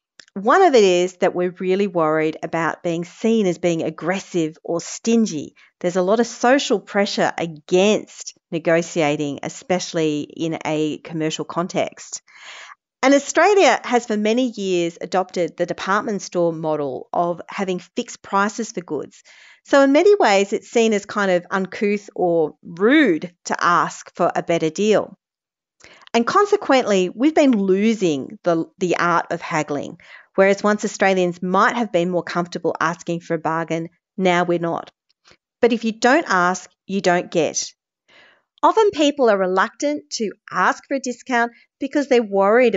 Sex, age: female, 40-59